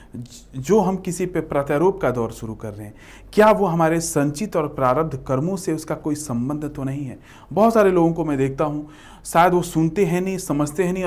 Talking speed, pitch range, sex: 215 wpm, 125-195 Hz, male